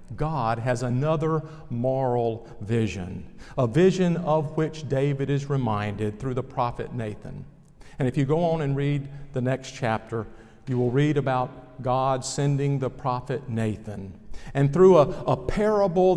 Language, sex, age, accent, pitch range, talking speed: English, male, 50-69, American, 125-155 Hz, 150 wpm